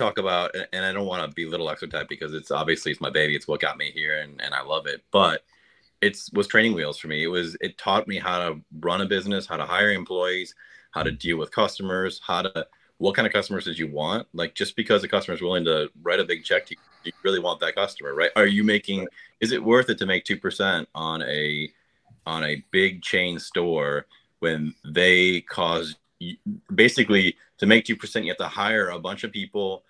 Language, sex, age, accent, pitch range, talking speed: English, male, 30-49, American, 80-110 Hz, 230 wpm